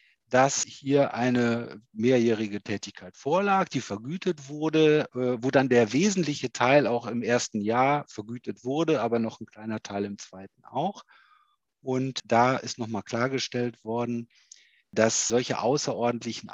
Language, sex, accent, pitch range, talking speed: German, male, German, 105-135 Hz, 135 wpm